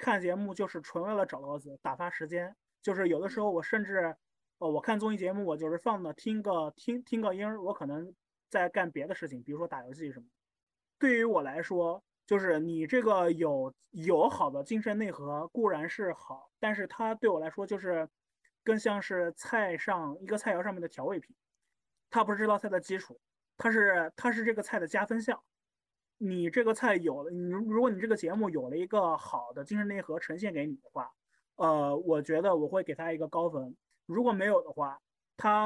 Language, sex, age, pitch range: Chinese, male, 20-39, 160-220 Hz